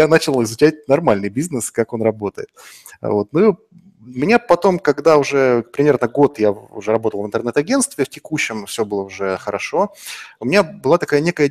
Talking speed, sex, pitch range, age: 170 wpm, male, 115-150 Hz, 20-39